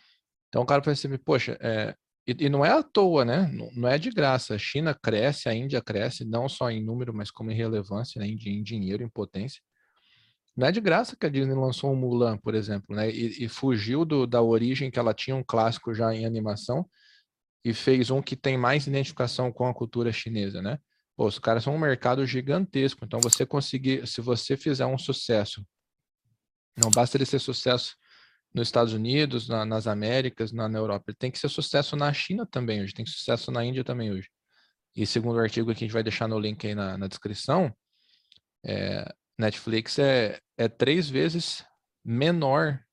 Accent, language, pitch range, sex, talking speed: Brazilian, Portuguese, 110-135 Hz, male, 200 wpm